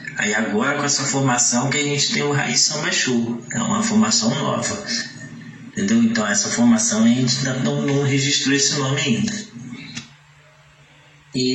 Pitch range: 135-225 Hz